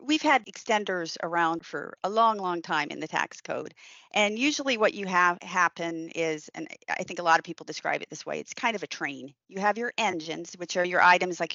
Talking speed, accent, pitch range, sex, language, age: 235 wpm, American, 170-210 Hz, female, English, 40-59